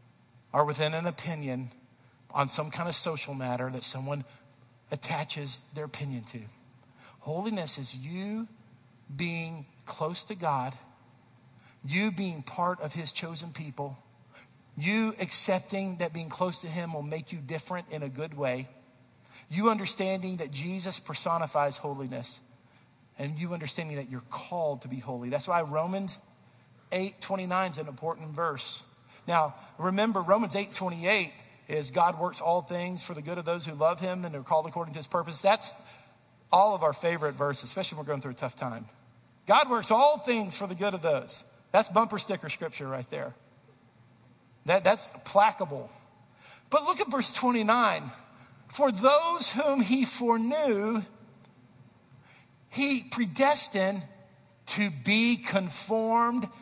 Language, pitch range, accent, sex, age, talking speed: English, 135-195 Hz, American, male, 50-69, 150 wpm